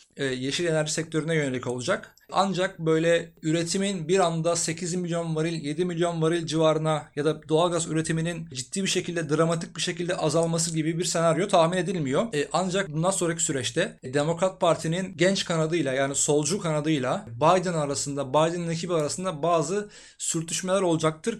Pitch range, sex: 155-180 Hz, male